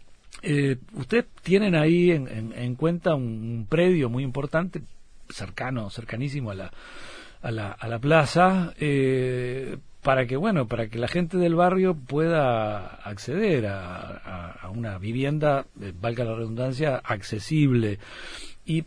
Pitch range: 115-150 Hz